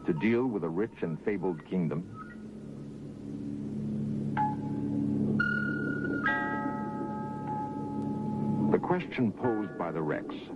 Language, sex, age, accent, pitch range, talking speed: English, male, 60-79, American, 70-120 Hz, 80 wpm